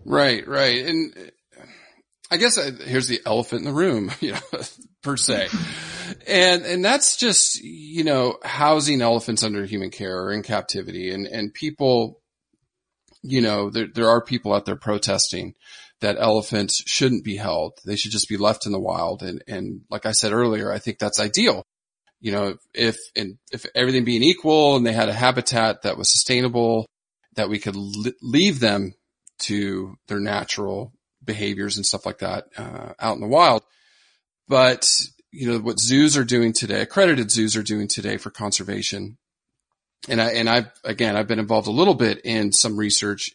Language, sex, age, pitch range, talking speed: English, male, 40-59, 105-125 Hz, 180 wpm